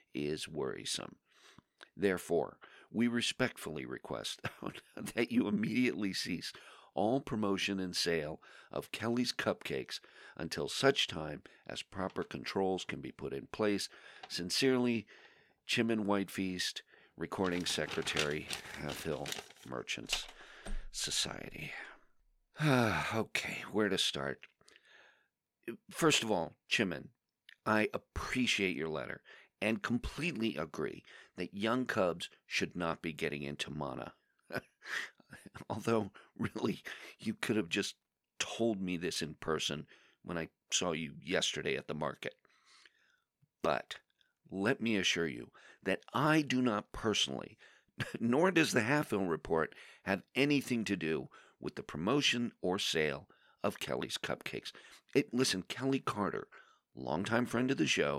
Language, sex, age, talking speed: English, male, 50-69, 120 wpm